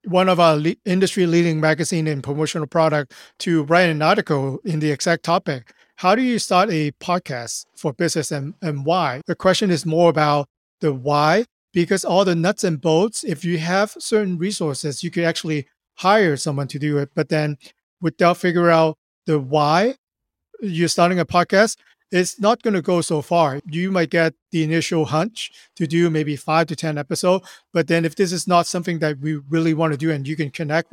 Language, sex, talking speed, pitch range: English, male, 200 wpm, 155-180 Hz